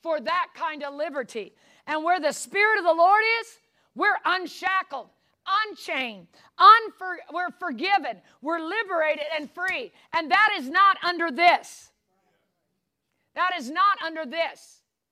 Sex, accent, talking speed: female, American, 130 wpm